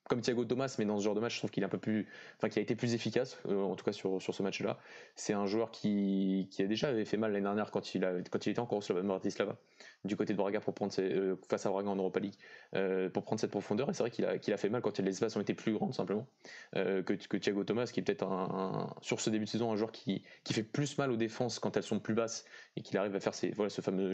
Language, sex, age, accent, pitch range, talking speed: French, male, 20-39, French, 100-115 Hz, 310 wpm